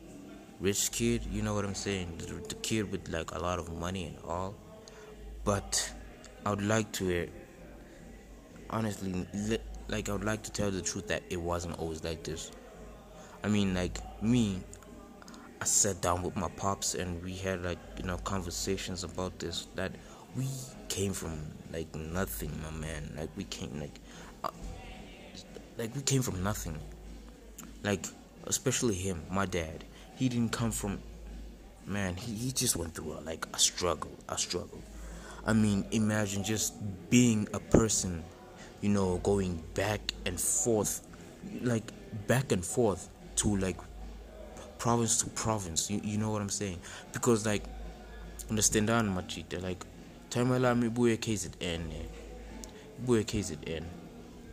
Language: English